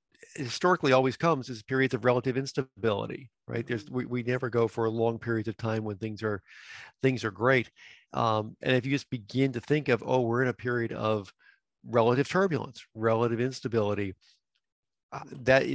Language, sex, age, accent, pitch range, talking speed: English, male, 40-59, American, 110-125 Hz, 175 wpm